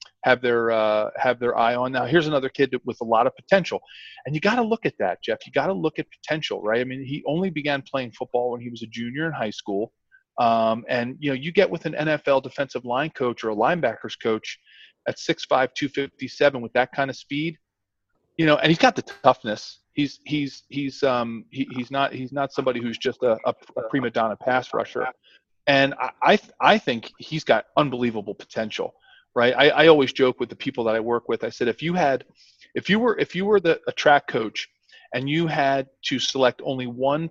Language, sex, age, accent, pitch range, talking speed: English, male, 40-59, American, 120-150 Hz, 230 wpm